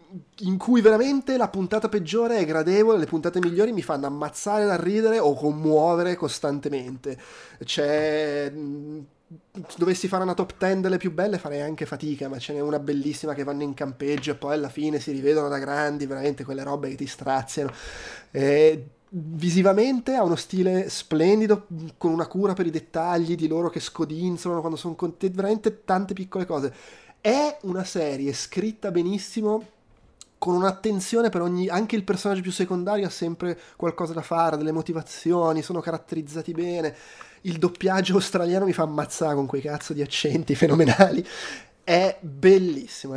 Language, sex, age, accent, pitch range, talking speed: Italian, male, 20-39, native, 145-185 Hz, 165 wpm